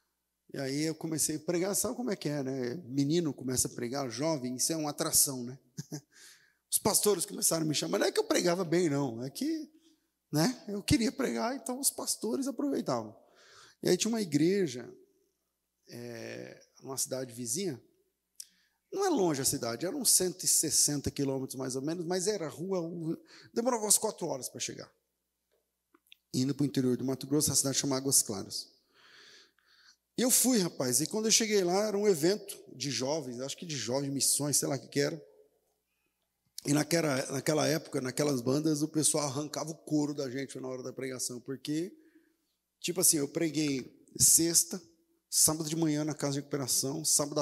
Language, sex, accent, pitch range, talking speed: Portuguese, male, Brazilian, 135-185 Hz, 180 wpm